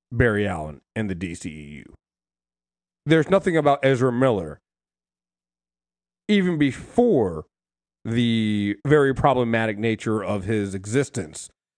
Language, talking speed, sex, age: English, 95 wpm, male, 30-49